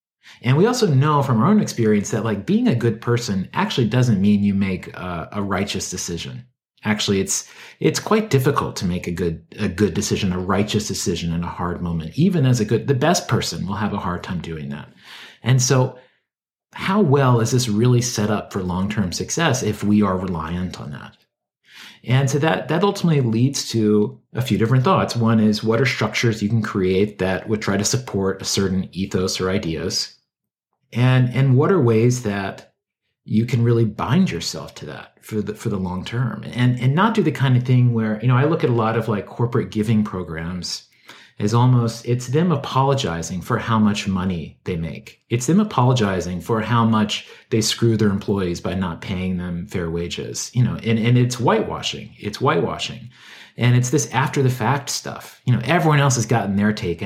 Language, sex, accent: English, male, American